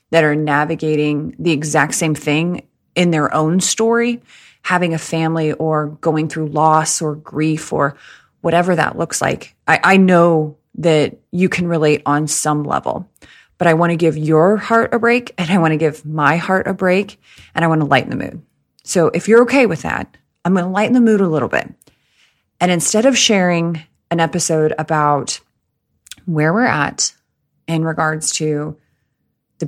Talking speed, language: 180 wpm, English